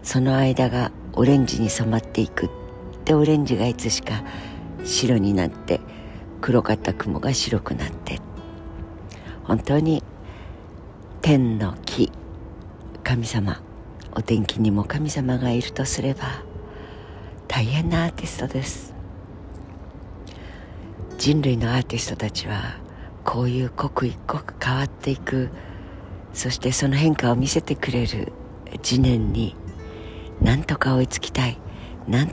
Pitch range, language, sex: 90-130 Hz, Japanese, female